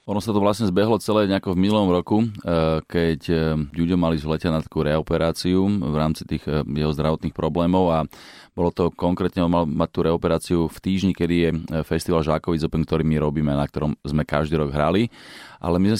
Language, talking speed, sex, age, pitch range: Slovak, 180 wpm, male, 30-49, 80-90 Hz